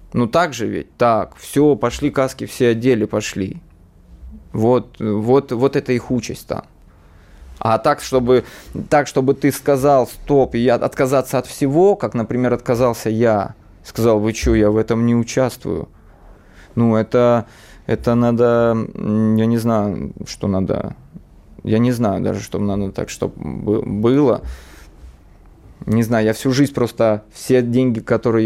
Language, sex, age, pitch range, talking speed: Russian, male, 20-39, 105-125 Hz, 140 wpm